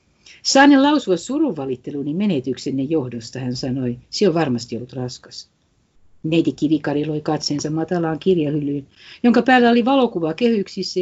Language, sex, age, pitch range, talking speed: Finnish, female, 60-79, 130-200 Hz, 130 wpm